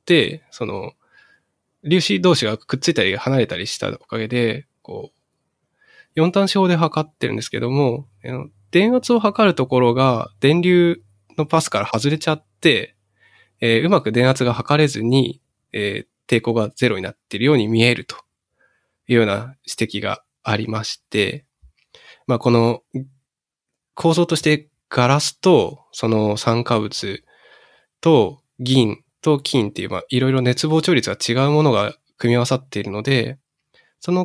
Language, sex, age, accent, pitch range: Japanese, male, 20-39, native, 115-160 Hz